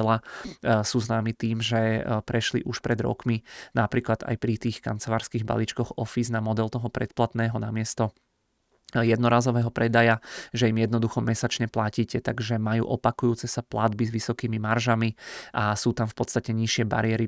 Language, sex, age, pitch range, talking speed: Czech, male, 20-39, 110-120 Hz, 150 wpm